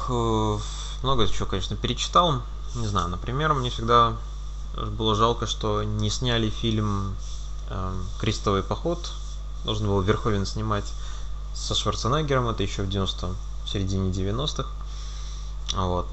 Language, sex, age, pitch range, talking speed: Russian, male, 20-39, 100-120 Hz, 110 wpm